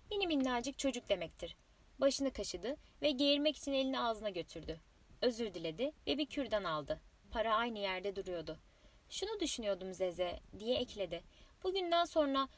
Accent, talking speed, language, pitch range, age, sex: native, 140 wpm, Turkish, 210-300 Hz, 20-39, female